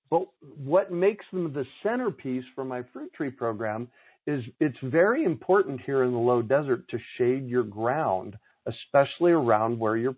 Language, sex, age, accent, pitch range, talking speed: English, male, 50-69, American, 120-160 Hz, 170 wpm